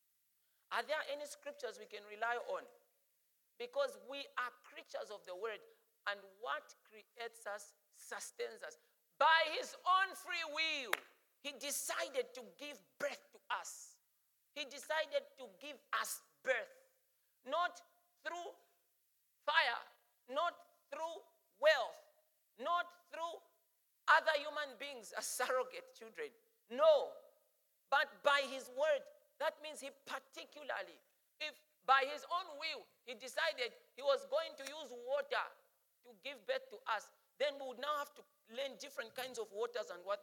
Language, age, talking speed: English, 50-69, 140 wpm